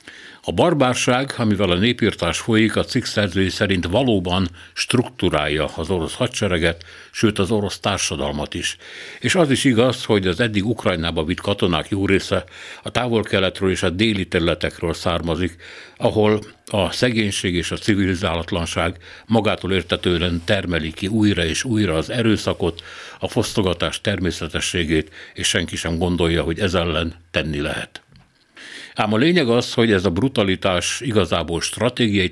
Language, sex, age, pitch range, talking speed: Hungarian, male, 60-79, 85-110 Hz, 140 wpm